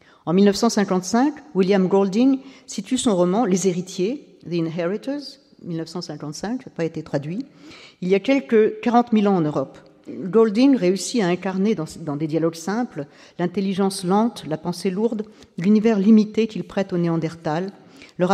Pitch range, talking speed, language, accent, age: 165-210 Hz, 155 wpm, French, French, 50-69